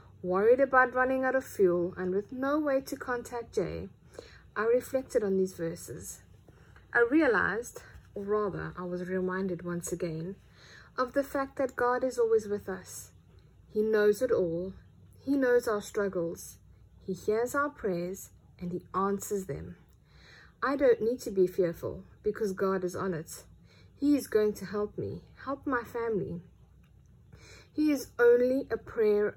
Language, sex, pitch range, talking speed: English, female, 180-245 Hz, 155 wpm